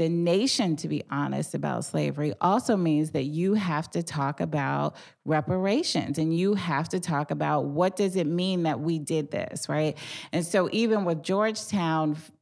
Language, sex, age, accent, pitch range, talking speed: English, female, 30-49, American, 155-190 Hz, 175 wpm